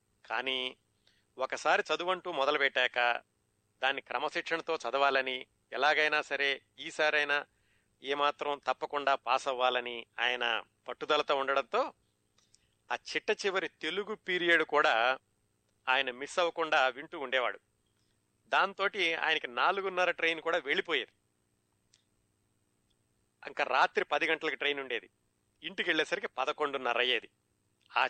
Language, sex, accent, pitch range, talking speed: Telugu, male, native, 130-155 Hz, 95 wpm